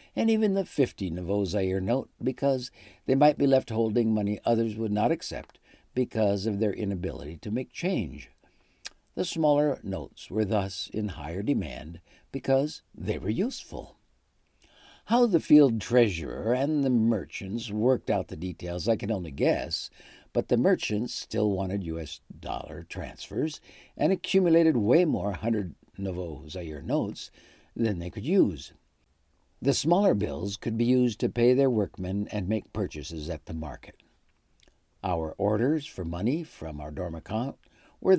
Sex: male